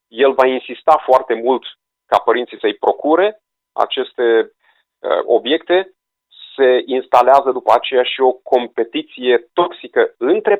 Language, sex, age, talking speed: Romanian, male, 30-49, 120 wpm